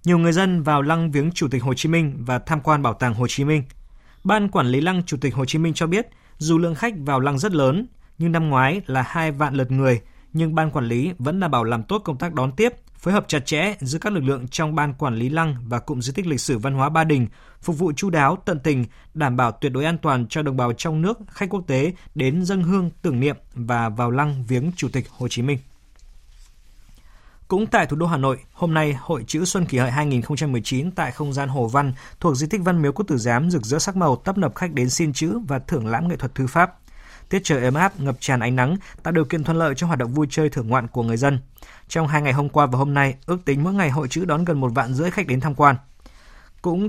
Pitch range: 130-165 Hz